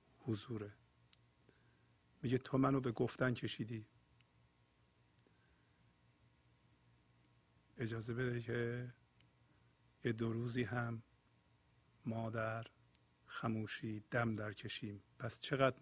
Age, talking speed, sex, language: 50-69, 80 wpm, male, Persian